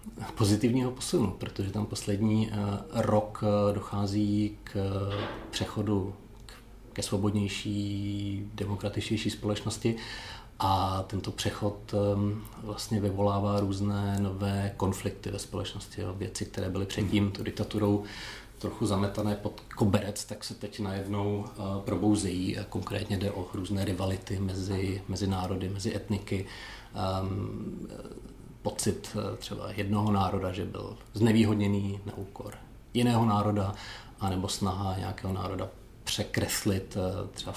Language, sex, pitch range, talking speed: Czech, male, 100-105 Hz, 105 wpm